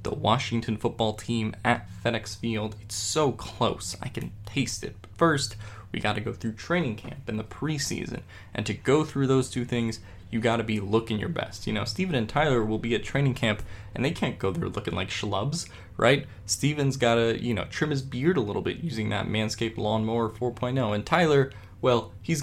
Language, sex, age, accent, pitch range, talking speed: English, male, 20-39, American, 105-125 Hz, 205 wpm